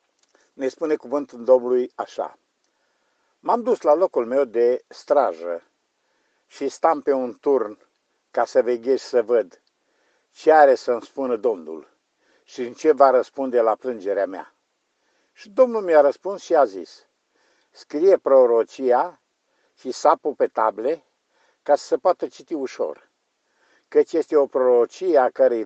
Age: 50-69